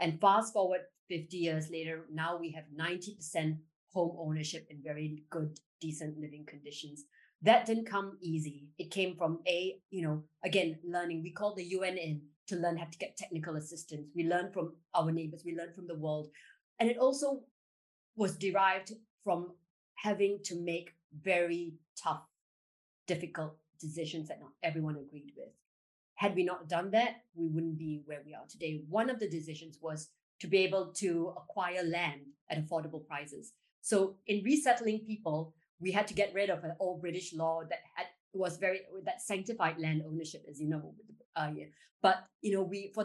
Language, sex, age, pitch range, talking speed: English, female, 30-49, 155-190 Hz, 175 wpm